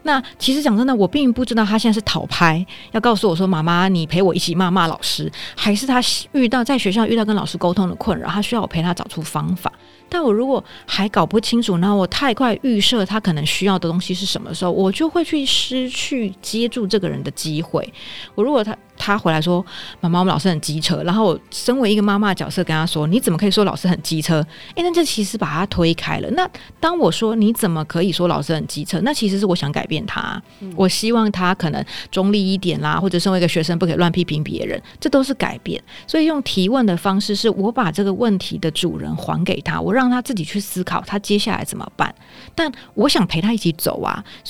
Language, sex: Chinese, female